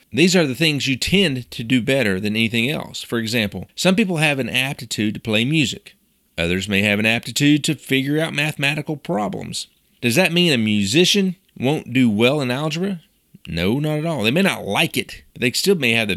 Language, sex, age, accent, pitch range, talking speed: English, male, 40-59, American, 115-165 Hz, 210 wpm